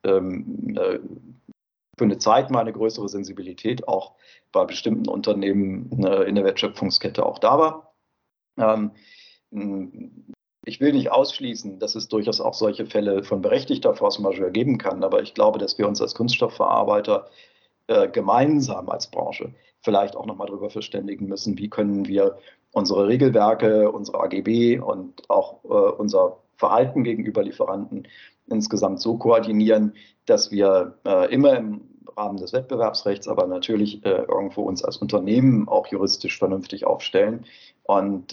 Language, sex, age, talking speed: German, male, 50-69, 135 wpm